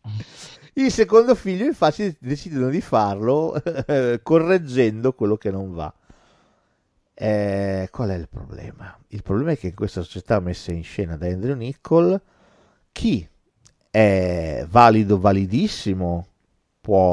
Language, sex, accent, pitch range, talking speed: Italian, male, native, 95-130 Hz, 125 wpm